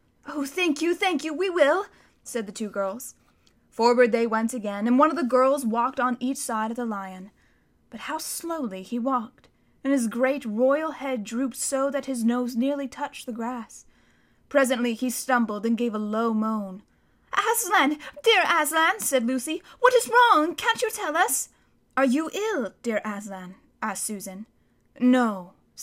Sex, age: female, 10-29